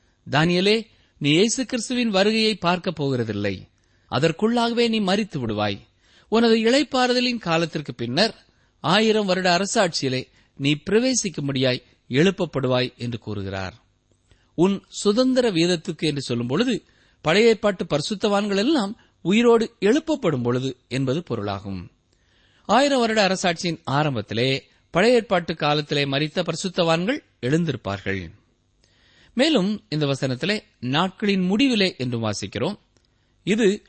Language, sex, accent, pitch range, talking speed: Tamil, male, native, 125-210 Hz, 100 wpm